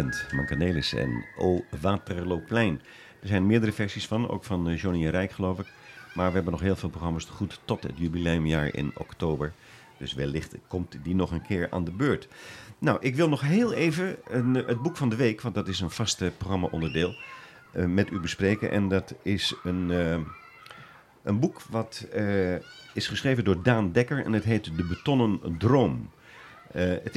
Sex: male